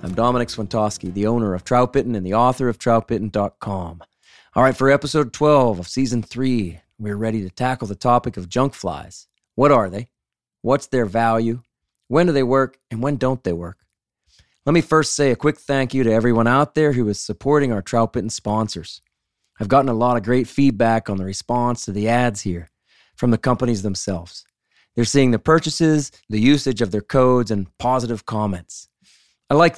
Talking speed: 190 wpm